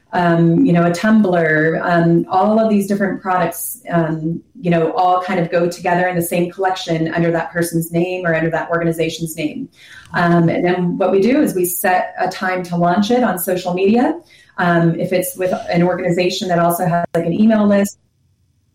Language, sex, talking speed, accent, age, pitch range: English, female, 200 wpm, American, 30-49, 175-205 Hz